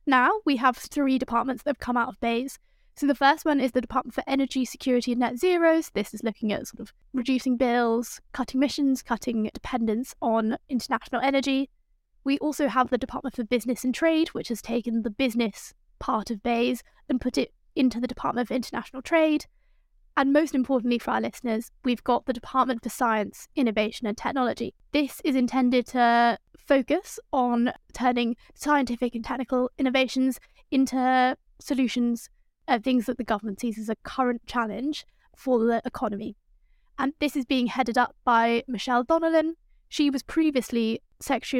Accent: British